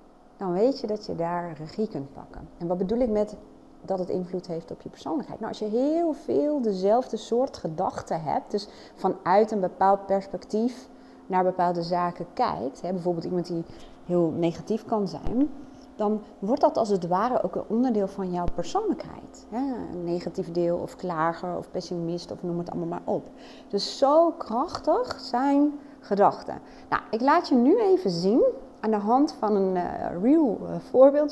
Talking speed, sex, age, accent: 170 wpm, female, 30-49, Dutch